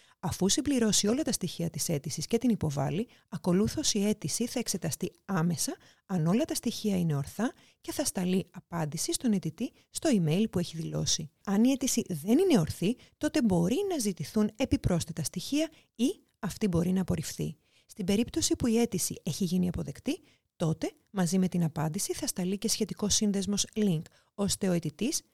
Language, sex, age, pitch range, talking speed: Greek, female, 30-49, 170-250 Hz, 170 wpm